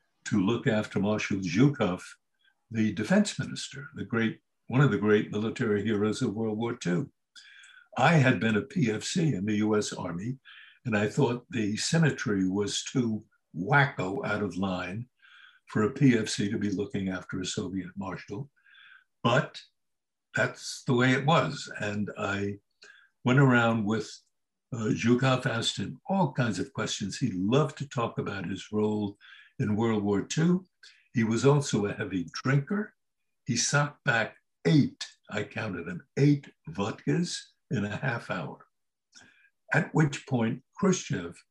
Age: 60-79